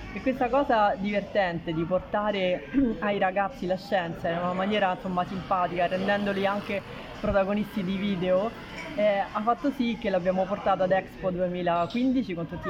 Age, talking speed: 30-49, 150 wpm